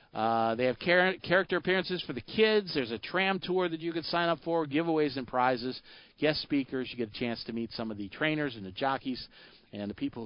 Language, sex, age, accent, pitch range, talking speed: English, male, 50-69, American, 110-155 Hz, 235 wpm